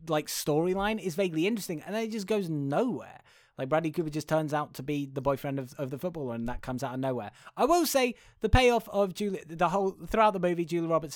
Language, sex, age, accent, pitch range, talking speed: English, male, 20-39, British, 125-155 Hz, 240 wpm